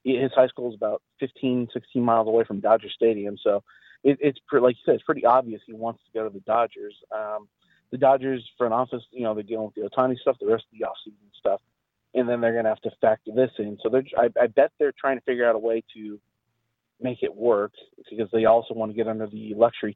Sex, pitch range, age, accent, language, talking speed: male, 110-130 Hz, 30-49, American, English, 245 wpm